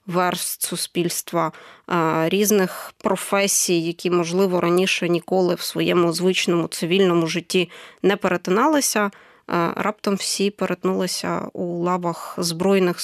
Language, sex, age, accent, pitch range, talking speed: Ukrainian, female, 20-39, native, 180-205 Hz, 95 wpm